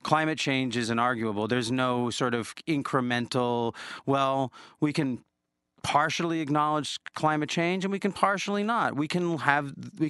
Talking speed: 150 wpm